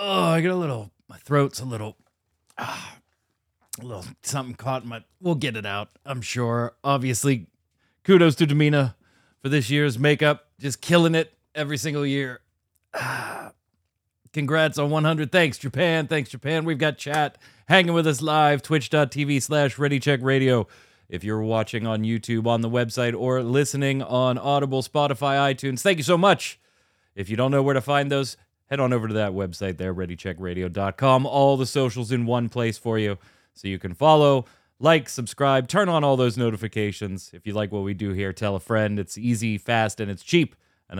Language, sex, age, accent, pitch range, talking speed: English, male, 30-49, American, 105-140 Hz, 180 wpm